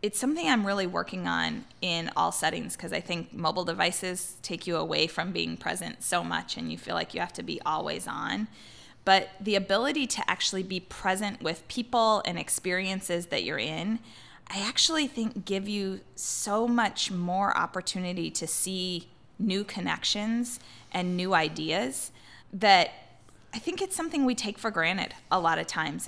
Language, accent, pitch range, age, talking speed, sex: English, American, 175-220 Hz, 20-39, 175 wpm, female